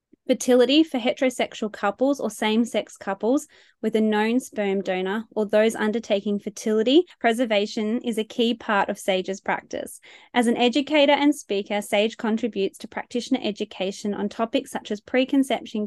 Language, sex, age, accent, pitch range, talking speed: English, female, 20-39, Australian, 200-240 Hz, 150 wpm